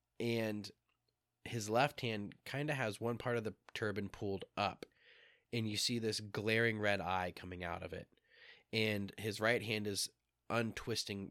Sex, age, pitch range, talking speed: male, 20-39, 95-115 Hz, 165 wpm